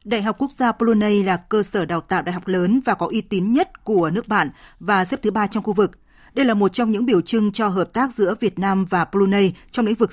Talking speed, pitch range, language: 275 wpm, 190-235 Hz, Vietnamese